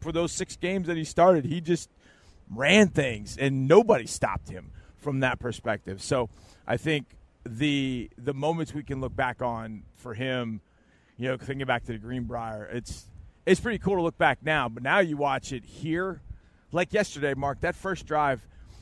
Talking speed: 185 wpm